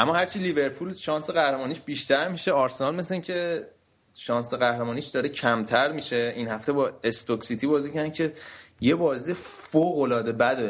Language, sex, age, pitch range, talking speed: Persian, male, 20-39, 110-140 Hz, 150 wpm